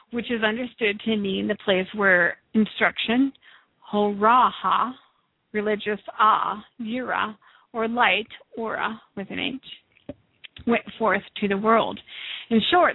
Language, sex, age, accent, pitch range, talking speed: English, female, 50-69, American, 195-230 Hz, 120 wpm